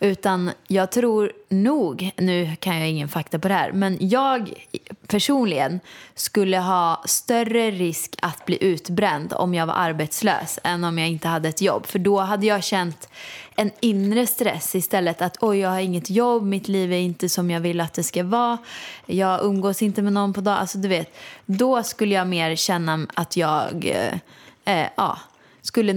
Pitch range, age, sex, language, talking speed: 170-205 Hz, 20-39, female, Swedish, 185 wpm